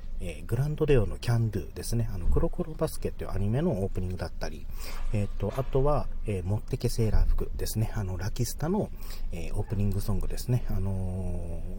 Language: Japanese